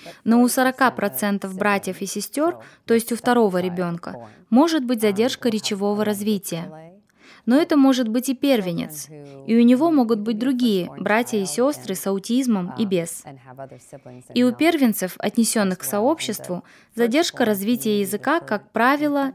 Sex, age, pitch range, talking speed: female, 20-39, 200-260 Hz, 145 wpm